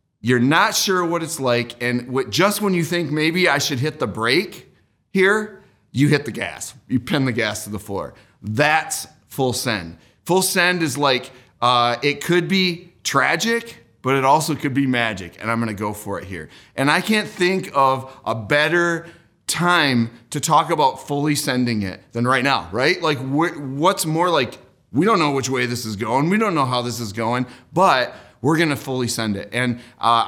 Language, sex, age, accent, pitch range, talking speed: English, male, 30-49, American, 115-155 Hz, 200 wpm